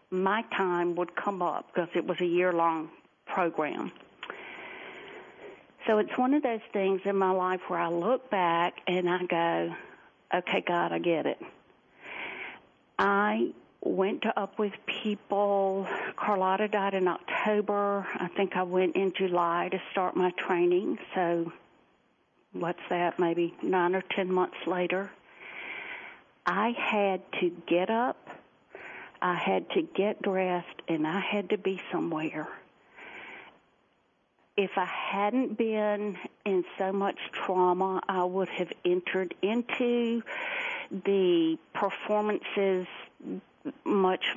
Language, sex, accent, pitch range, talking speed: English, female, American, 180-210 Hz, 125 wpm